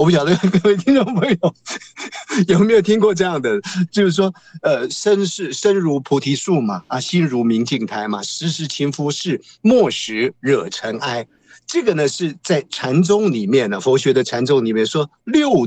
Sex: male